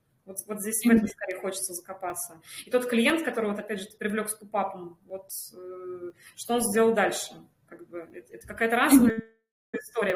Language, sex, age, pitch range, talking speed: Russian, female, 20-39, 190-235 Hz, 175 wpm